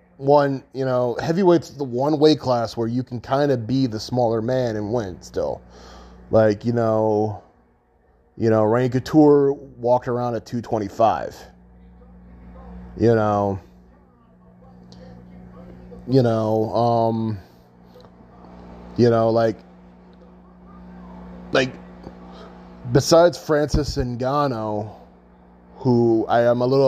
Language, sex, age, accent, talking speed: English, male, 20-39, American, 110 wpm